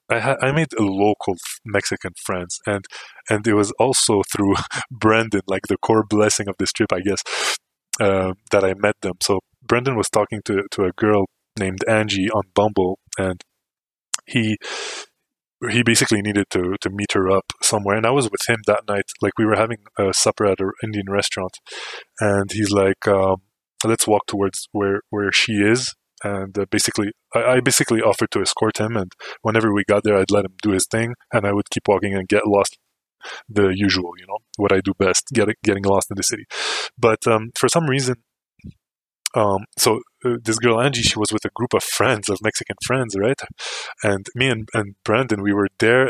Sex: male